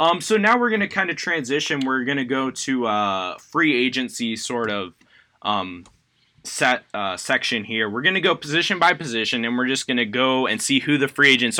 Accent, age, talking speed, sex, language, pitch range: American, 20-39, 230 wpm, male, English, 110-145 Hz